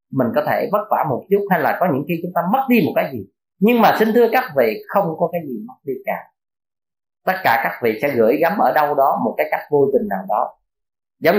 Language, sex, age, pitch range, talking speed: Vietnamese, male, 20-39, 135-200 Hz, 265 wpm